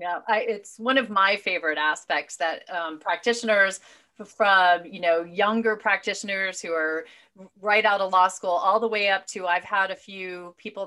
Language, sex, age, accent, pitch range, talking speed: English, female, 30-49, American, 160-200 Hz, 175 wpm